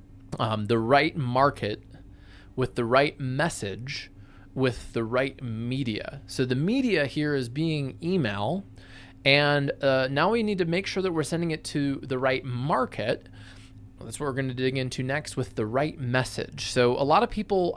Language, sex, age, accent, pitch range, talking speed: English, male, 20-39, American, 115-160 Hz, 175 wpm